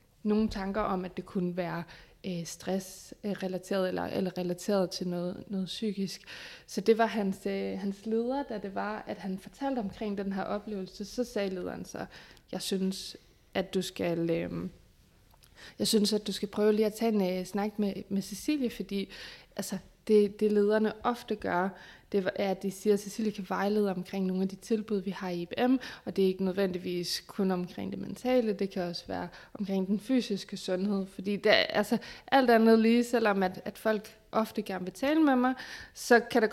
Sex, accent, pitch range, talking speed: female, native, 185-215 Hz, 200 wpm